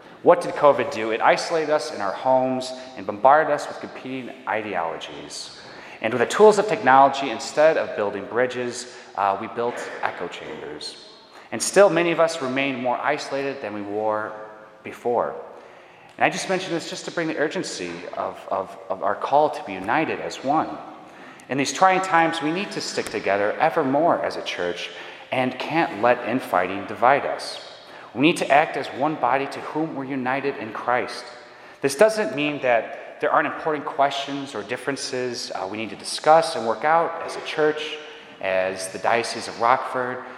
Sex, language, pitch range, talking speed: male, English, 115-155 Hz, 180 wpm